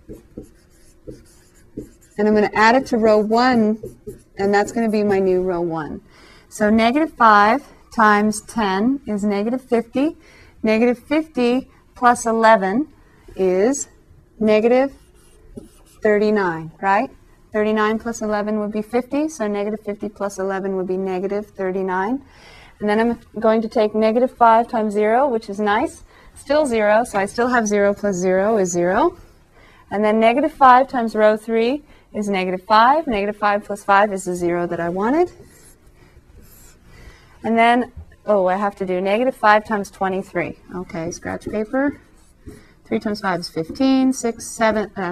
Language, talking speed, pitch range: English, 150 wpm, 195-235 Hz